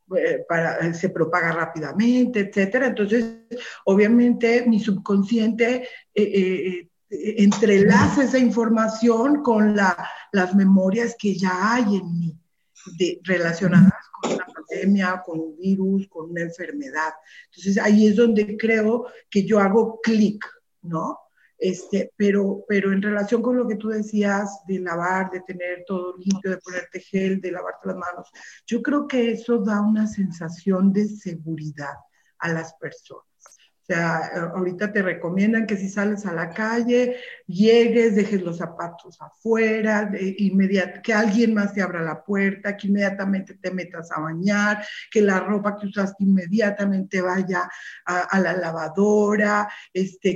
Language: Spanish